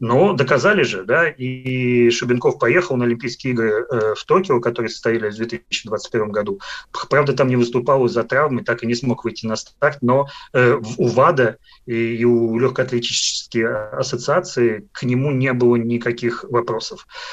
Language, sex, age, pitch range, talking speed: Russian, male, 30-49, 115-130 Hz, 150 wpm